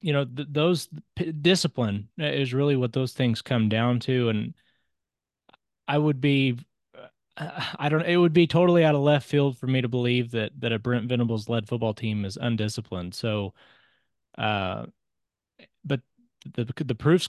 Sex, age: male, 20-39